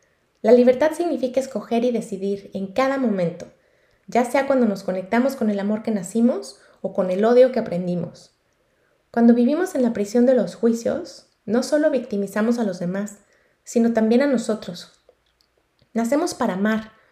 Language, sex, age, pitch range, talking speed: Spanish, female, 20-39, 200-255 Hz, 160 wpm